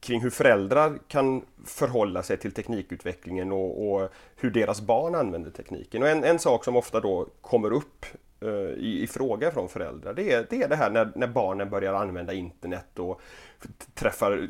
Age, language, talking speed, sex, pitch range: 30-49, Swedish, 180 wpm, male, 95-155 Hz